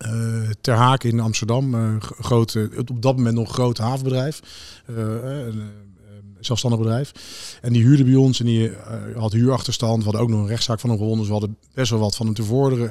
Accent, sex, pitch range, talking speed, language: Dutch, male, 115-125 Hz, 230 wpm, Dutch